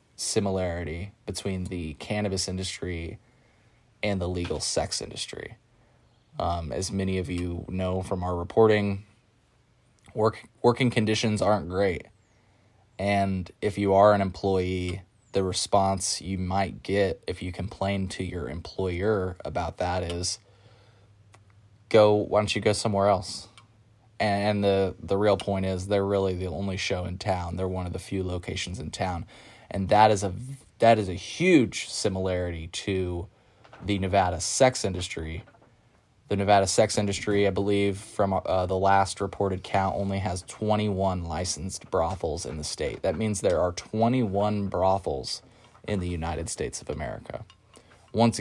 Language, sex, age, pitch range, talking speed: English, male, 20-39, 95-105 Hz, 150 wpm